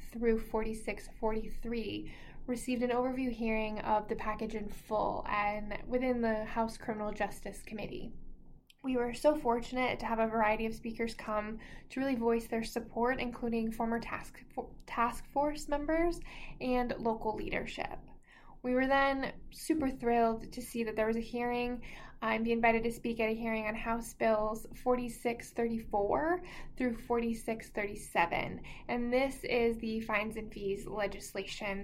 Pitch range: 215-245 Hz